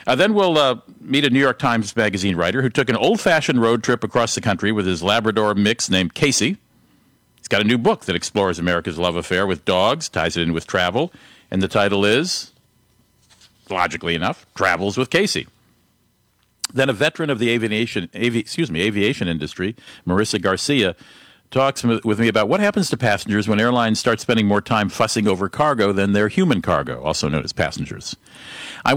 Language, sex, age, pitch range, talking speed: English, male, 50-69, 100-135 Hz, 190 wpm